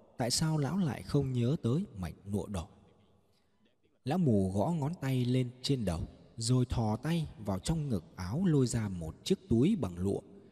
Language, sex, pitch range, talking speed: Vietnamese, male, 100-140 Hz, 185 wpm